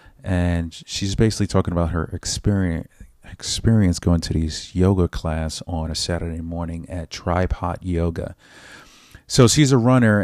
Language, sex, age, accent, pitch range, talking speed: English, male, 30-49, American, 85-100 Hz, 145 wpm